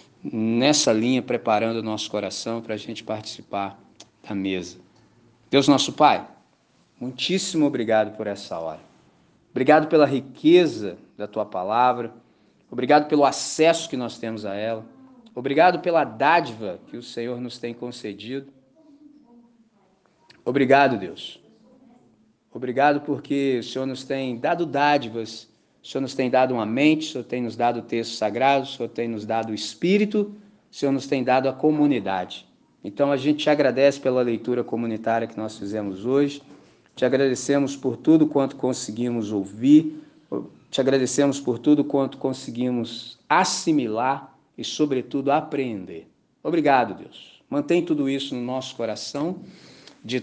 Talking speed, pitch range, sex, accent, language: 145 wpm, 115-145 Hz, male, Brazilian, Portuguese